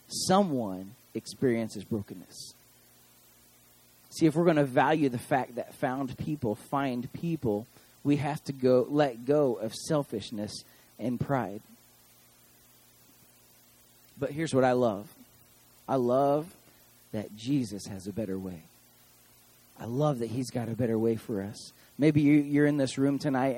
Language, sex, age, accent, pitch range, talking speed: English, male, 30-49, American, 120-160 Hz, 145 wpm